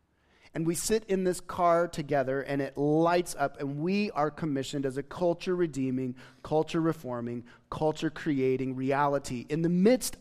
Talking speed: 140 wpm